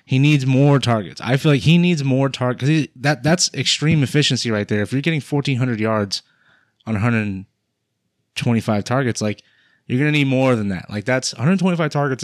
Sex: male